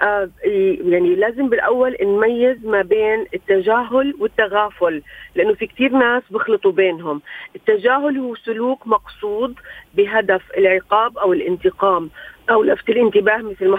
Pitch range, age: 195-245 Hz, 40-59